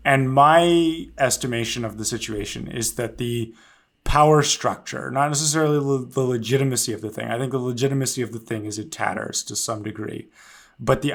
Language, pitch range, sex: English, 110-130 Hz, male